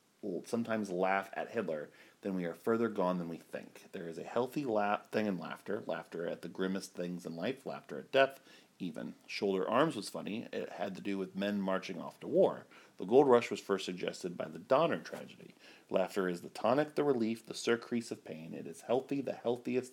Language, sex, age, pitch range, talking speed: English, male, 40-59, 95-120 Hz, 210 wpm